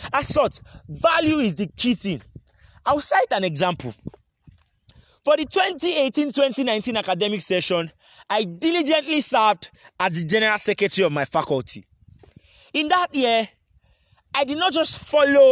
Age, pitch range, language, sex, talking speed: 30-49, 185-280 Hz, English, male, 135 wpm